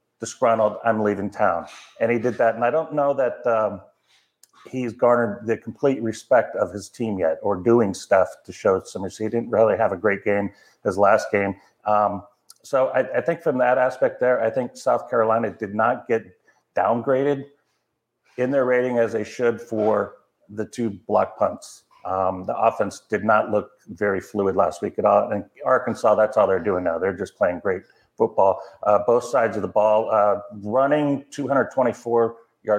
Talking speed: 180 wpm